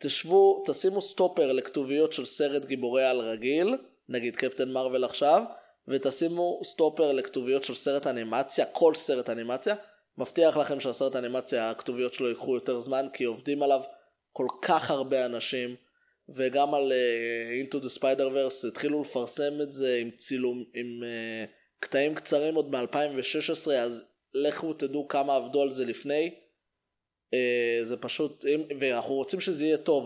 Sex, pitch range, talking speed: male, 125-155 Hz, 145 wpm